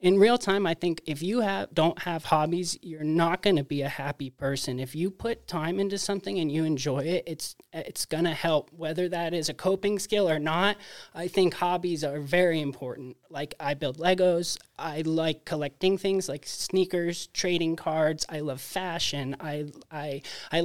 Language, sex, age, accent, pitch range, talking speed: English, male, 20-39, American, 155-200 Hz, 190 wpm